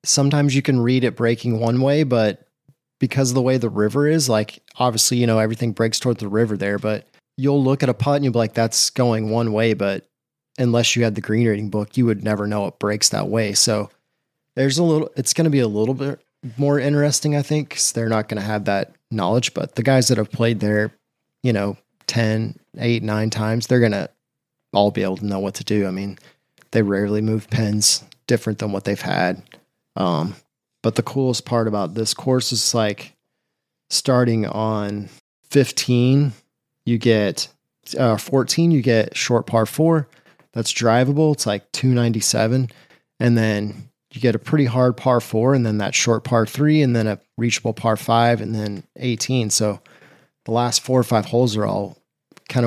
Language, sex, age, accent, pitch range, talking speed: English, male, 30-49, American, 110-130 Hz, 200 wpm